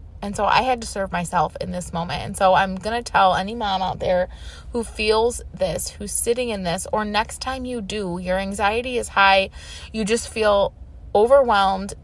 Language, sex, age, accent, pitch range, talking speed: English, female, 20-39, American, 165-220 Hz, 200 wpm